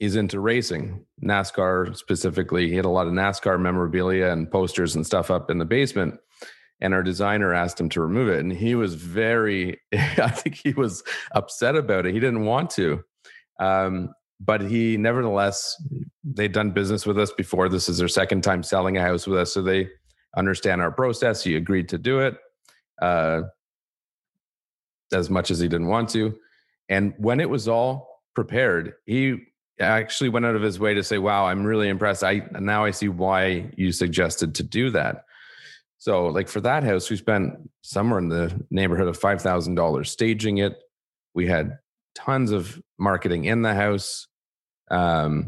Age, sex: 40-59, male